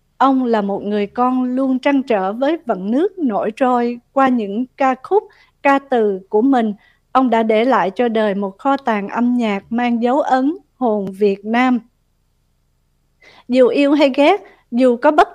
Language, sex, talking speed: Vietnamese, female, 175 wpm